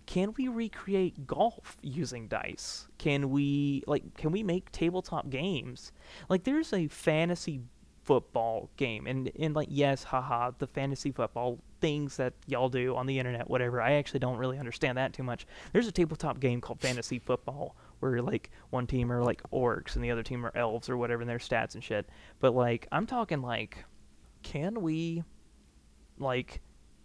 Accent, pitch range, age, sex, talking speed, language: American, 120-155 Hz, 20-39, male, 175 wpm, English